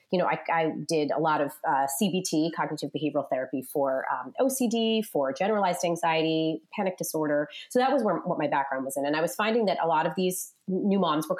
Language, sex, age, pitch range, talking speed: English, female, 30-49, 155-215 Hz, 220 wpm